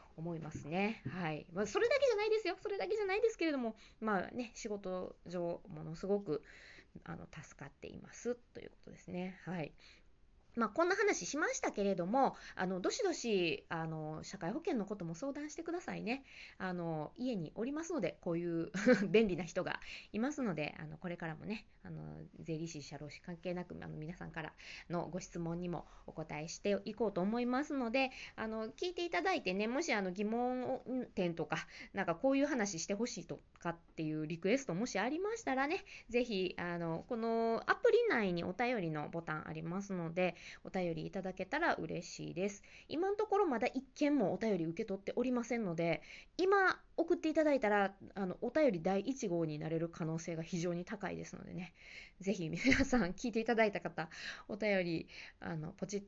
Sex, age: female, 20-39